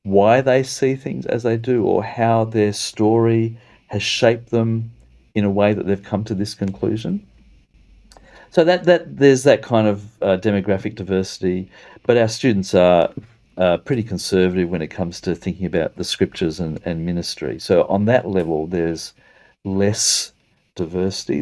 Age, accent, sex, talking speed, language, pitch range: 50-69, Australian, male, 160 wpm, English, 95-120 Hz